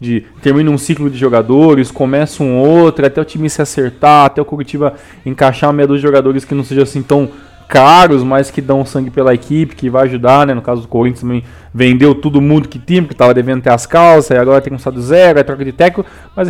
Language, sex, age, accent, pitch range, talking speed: Portuguese, male, 20-39, Brazilian, 115-140 Hz, 235 wpm